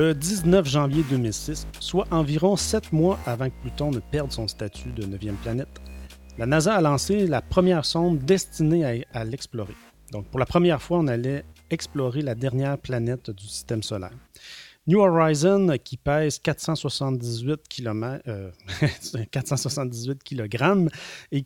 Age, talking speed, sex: 30-49, 150 wpm, male